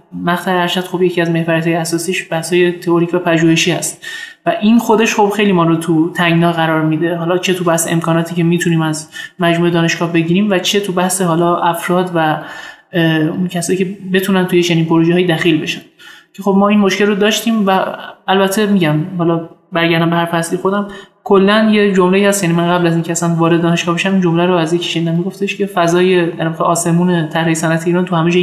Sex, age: male, 20-39